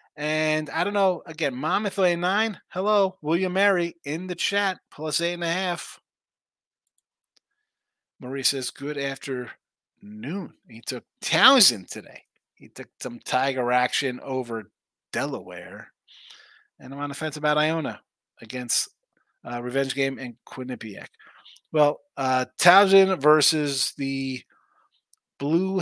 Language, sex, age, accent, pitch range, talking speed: English, male, 30-49, American, 125-155 Hz, 125 wpm